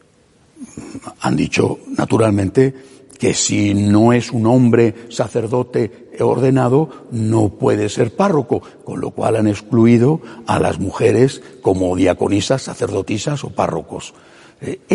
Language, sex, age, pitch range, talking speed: Spanish, male, 60-79, 115-155 Hz, 115 wpm